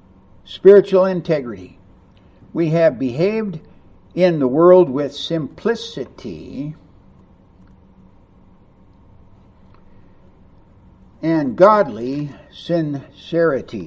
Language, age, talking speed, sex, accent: English, 60-79, 55 wpm, male, American